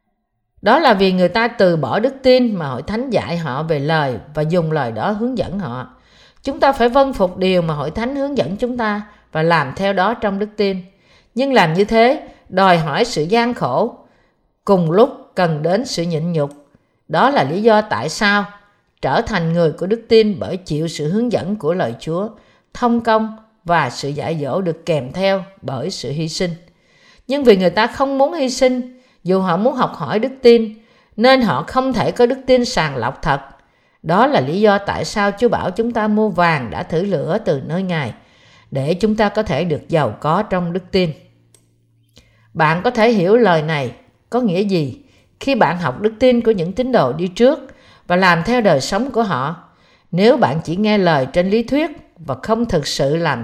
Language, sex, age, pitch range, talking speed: Vietnamese, female, 50-69, 160-230 Hz, 210 wpm